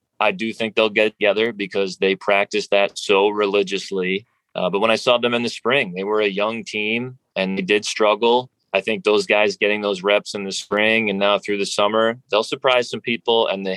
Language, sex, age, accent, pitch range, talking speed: English, male, 20-39, American, 95-110 Hz, 220 wpm